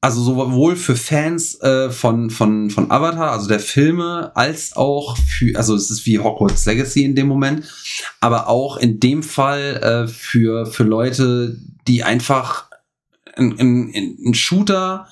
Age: 40-59